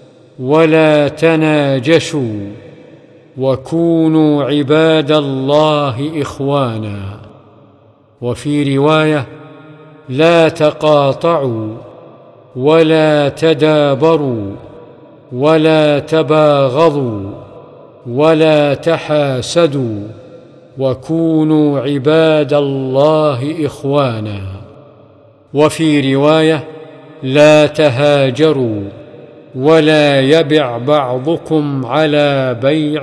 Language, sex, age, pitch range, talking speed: Arabic, male, 50-69, 135-155 Hz, 55 wpm